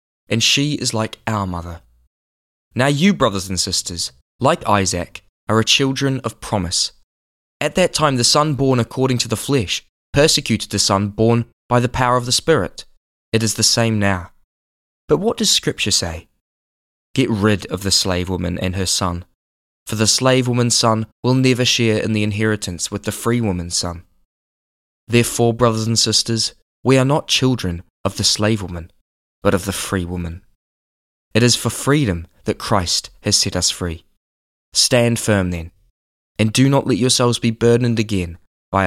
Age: 20-39